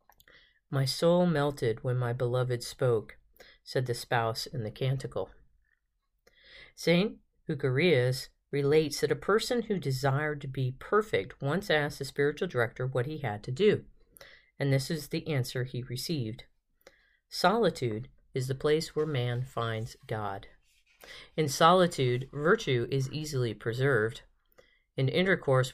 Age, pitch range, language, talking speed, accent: 40-59, 125-160 Hz, English, 135 wpm, American